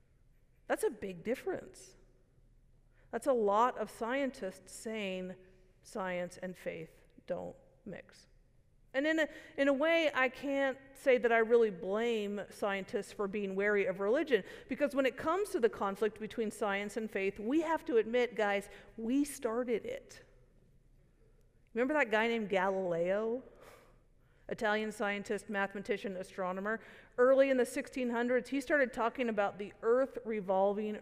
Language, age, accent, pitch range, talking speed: English, 50-69, American, 200-265 Hz, 140 wpm